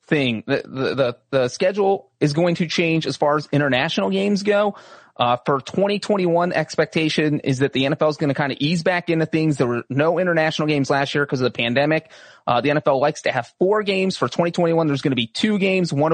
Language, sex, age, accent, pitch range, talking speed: English, male, 30-49, American, 145-180 Hz, 225 wpm